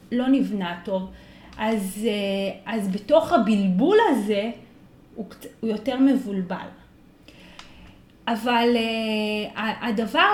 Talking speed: 75 wpm